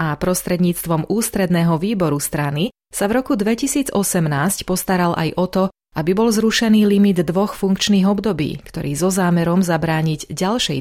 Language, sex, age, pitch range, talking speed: Slovak, female, 30-49, 160-200 Hz, 145 wpm